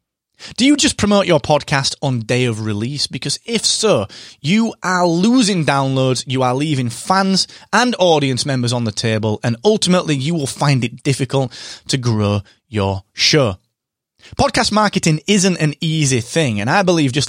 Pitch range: 120-165 Hz